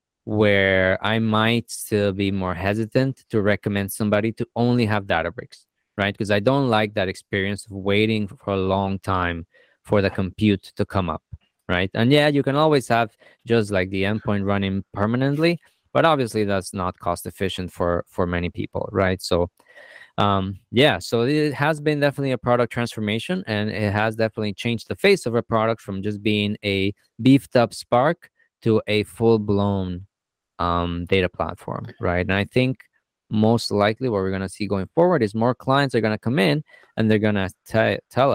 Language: English